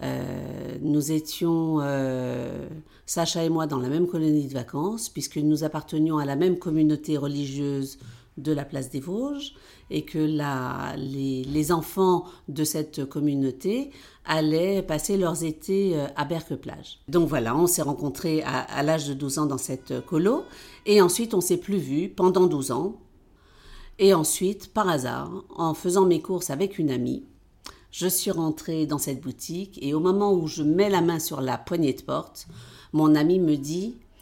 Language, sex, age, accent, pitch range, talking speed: French, female, 50-69, French, 145-190 Hz, 175 wpm